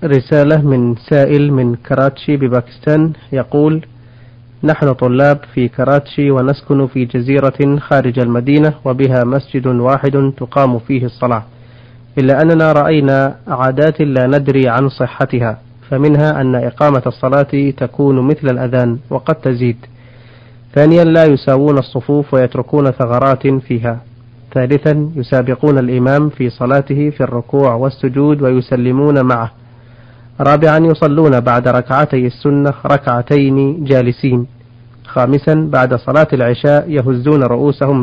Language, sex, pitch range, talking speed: Arabic, male, 125-145 Hz, 110 wpm